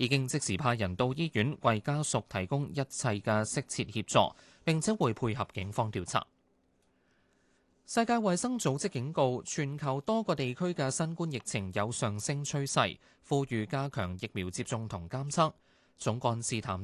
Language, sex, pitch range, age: Chinese, male, 115-150 Hz, 20-39